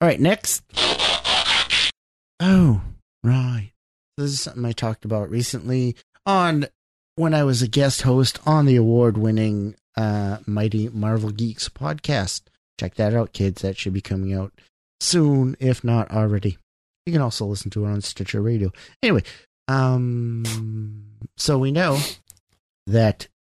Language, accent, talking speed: English, American, 140 wpm